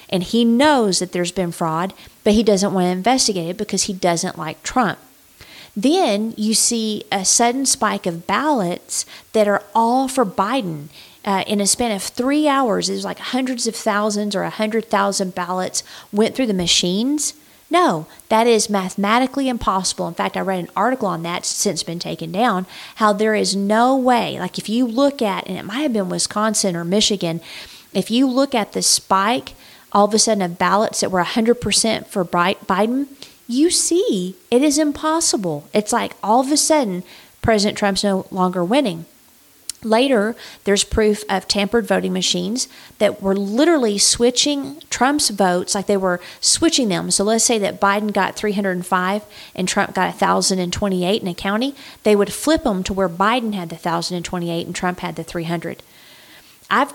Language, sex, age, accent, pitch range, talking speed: English, female, 40-59, American, 185-240 Hz, 180 wpm